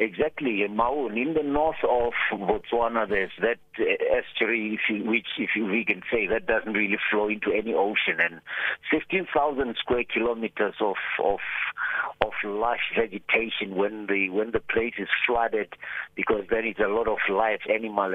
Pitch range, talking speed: 105-125 Hz, 170 wpm